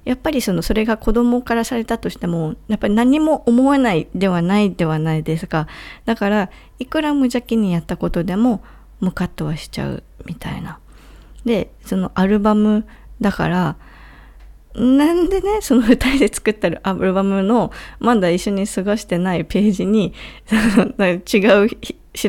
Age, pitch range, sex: 20-39, 170-235 Hz, female